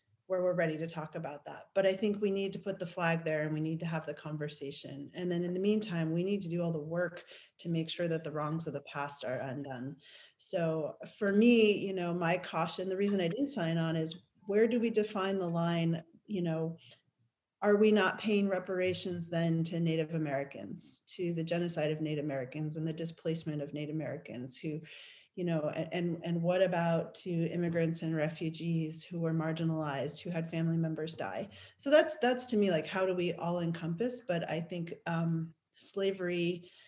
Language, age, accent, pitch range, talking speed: English, 30-49, American, 160-190 Hz, 205 wpm